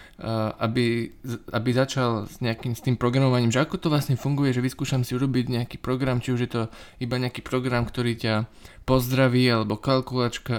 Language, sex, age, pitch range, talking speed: Slovak, male, 20-39, 110-130 Hz, 180 wpm